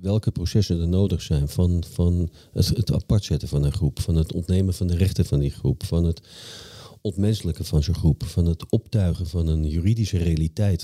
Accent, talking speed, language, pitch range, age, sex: Dutch, 200 wpm, Dutch, 80-100 Hz, 50-69, male